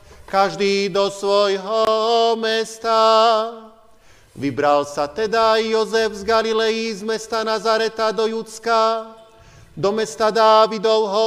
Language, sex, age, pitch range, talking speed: Slovak, male, 40-59, 200-225 Hz, 95 wpm